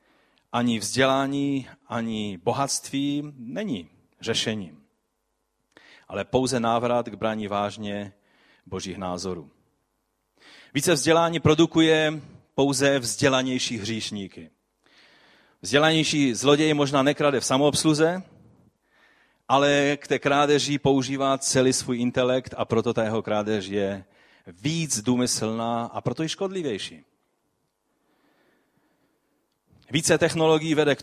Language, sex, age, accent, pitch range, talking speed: Czech, male, 40-59, native, 110-145 Hz, 95 wpm